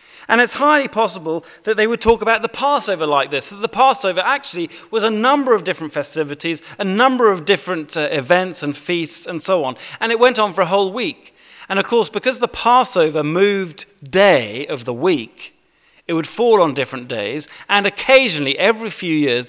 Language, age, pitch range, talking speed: English, 40-59, 150-210 Hz, 195 wpm